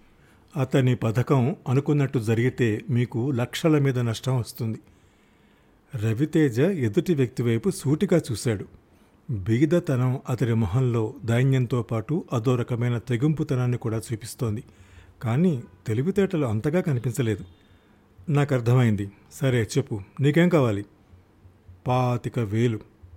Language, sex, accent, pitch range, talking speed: Telugu, male, native, 115-155 Hz, 95 wpm